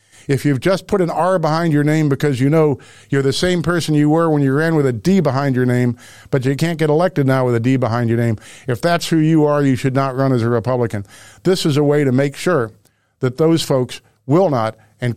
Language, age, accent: English, 50-69, American